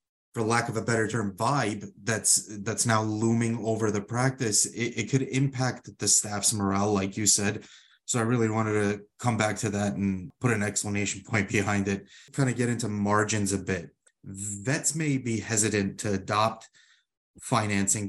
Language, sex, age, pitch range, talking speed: English, male, 30-49, 100-120 Hz, 180 wpm